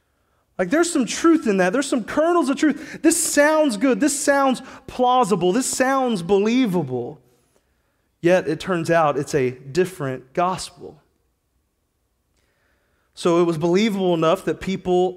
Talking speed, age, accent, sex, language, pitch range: 140 wpm, 30-49, American, male, English, 165-220 Hz